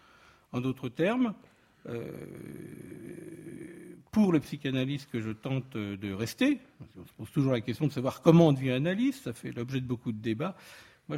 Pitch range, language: 125-185 Hz, French